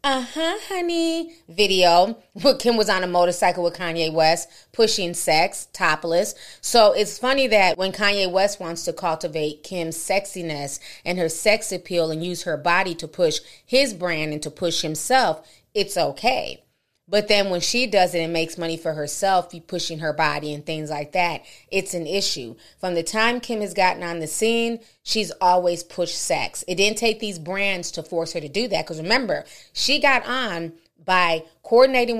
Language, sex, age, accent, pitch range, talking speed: English, female, 30-49, American, 165-215 Hz, 185 wpm